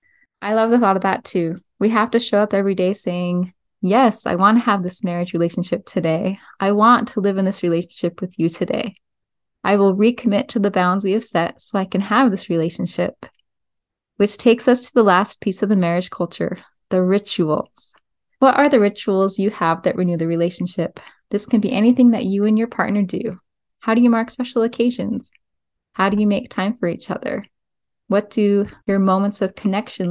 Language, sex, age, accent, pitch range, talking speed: English, female, 10-29, American, 190-230 Hz, 200 wpm